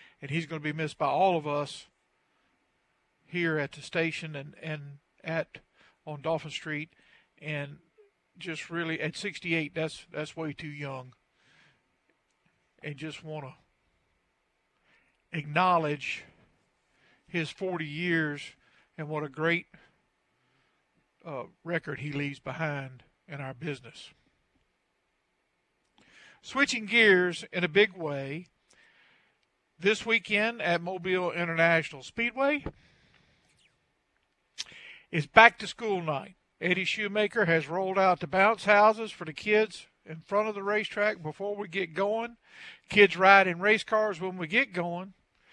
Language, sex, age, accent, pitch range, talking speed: English, male, 50-69, American, 155-205 Hz, 125 wpm